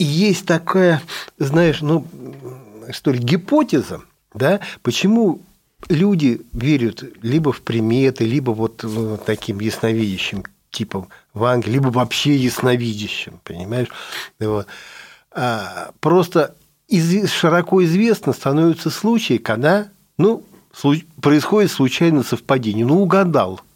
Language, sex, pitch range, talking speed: Russian, male, 120-175 Hz, 95 wpm